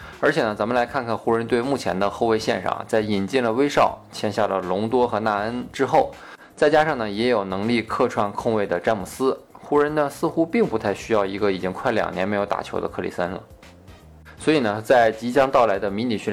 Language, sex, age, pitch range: Chinese, male, 20-39, 95-125 Hz